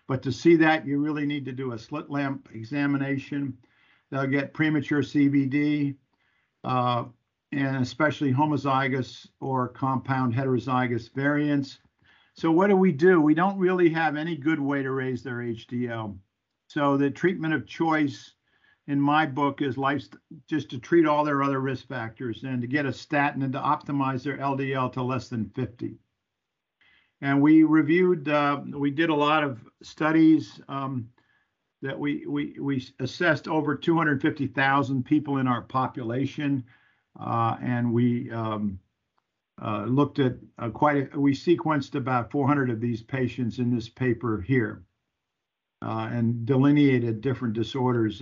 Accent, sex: American, male